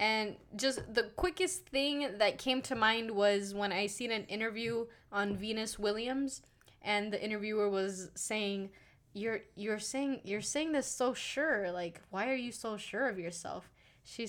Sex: female